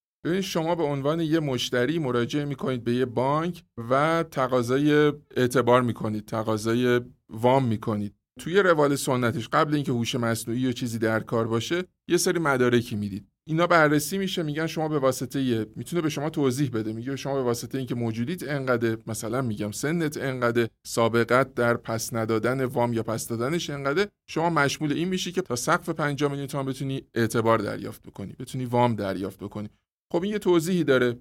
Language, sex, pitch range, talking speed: Persian, male, 115-155 Hz, 165 wpm